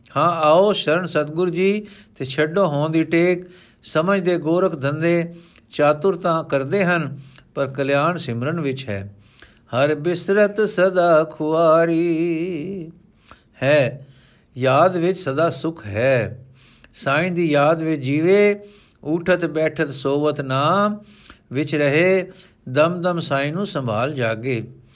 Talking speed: 115 wpm